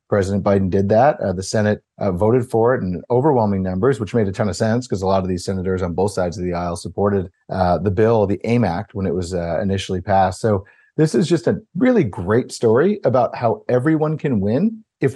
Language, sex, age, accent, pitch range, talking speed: English, male, 40-59, American, 100-130 Hz, 235 wpm